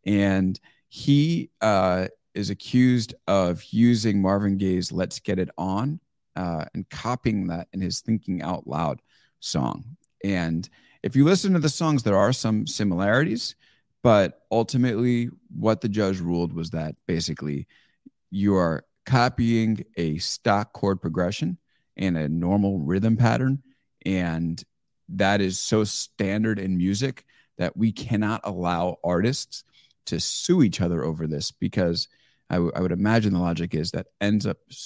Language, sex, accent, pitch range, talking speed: English, male, American, 90-115 Hz, 145 wpm